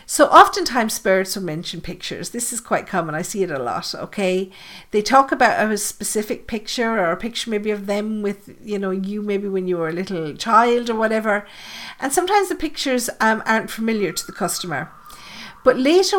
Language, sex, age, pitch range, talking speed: English, female, 50-69, 180-235 Hz, 195 wpm